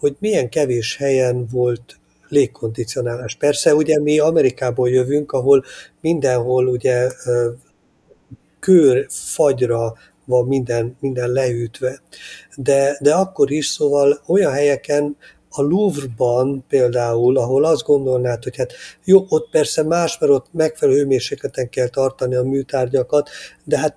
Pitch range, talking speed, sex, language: 130-160 Hz, 120 wpm, male, Hungarian